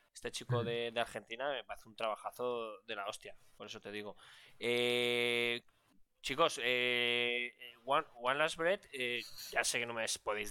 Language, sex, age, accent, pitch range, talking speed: Spanish, male, 20-39, Spanish, 115-130 Hz, 170 wpm